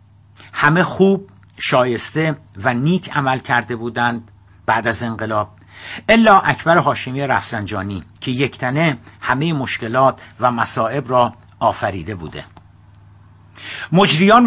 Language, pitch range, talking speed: Persian, 105-155 Hz, 110 wpm